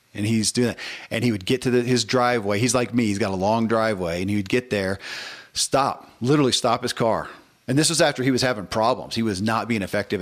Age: 40-59